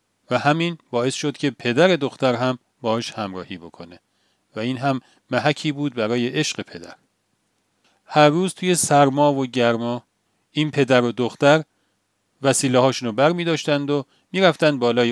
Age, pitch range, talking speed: 40-59, 110-145 Hz, 145 wpm